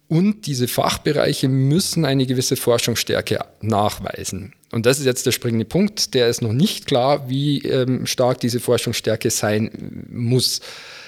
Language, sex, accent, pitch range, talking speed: German, male, German, 115-135 Hz, 145 wpm